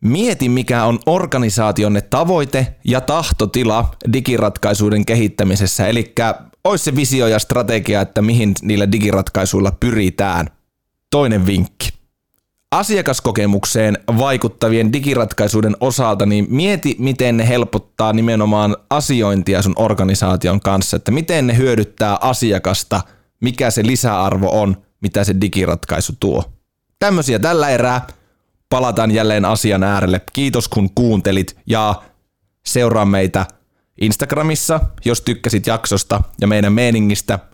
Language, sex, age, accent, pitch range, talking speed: Finnish, male, 20-39, native, 100-125 Hz, 110 wpm